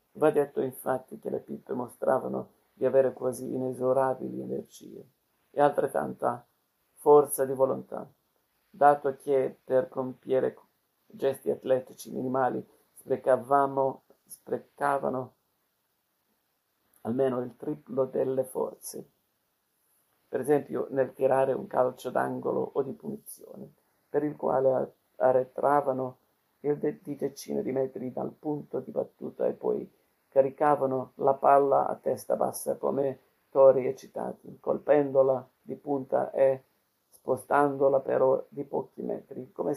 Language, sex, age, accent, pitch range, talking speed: Italian, male, 50-69, native, 130-145 Hz, 110 wpm